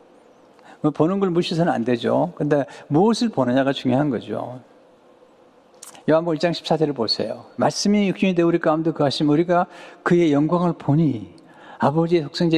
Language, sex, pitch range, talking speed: English, male, 150-200 Hz, 130 wpm